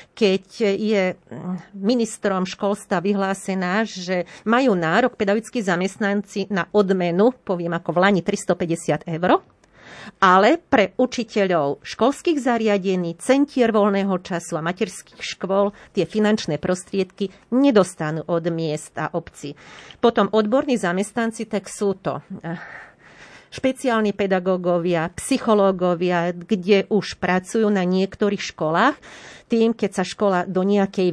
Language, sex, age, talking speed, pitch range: Slovak, female, 40-59, 110 wpm, 180-220 Hz